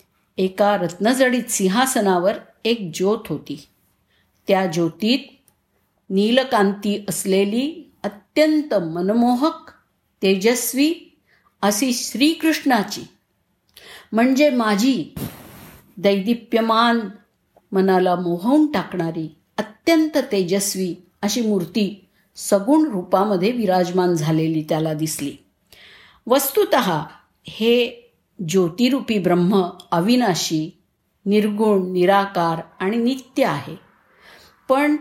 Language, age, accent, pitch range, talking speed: Marathi, 50-69, native, 180-245 Hz, 70 wpm